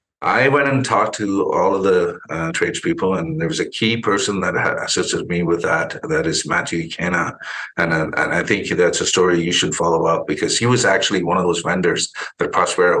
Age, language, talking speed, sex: 50-69, English, 215 wpm, male